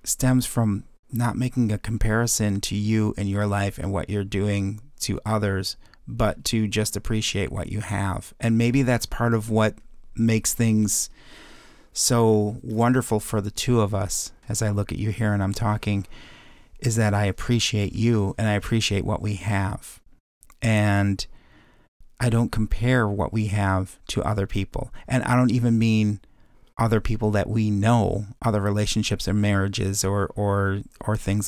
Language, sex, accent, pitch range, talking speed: English, male, American, 100-115 Hz, 165 wpm